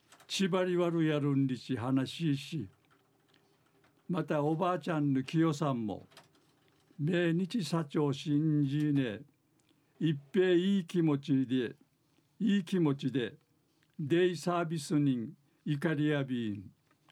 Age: 60-79